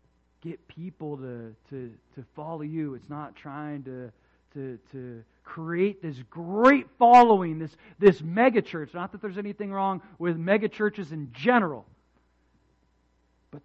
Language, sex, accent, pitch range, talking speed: English, male, American, 140-205 Hz, 130 wpm